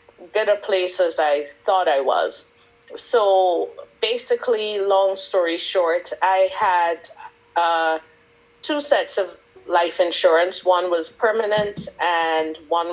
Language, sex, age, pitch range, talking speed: English, female, 30-49, 165-205 Hz, 120 wpm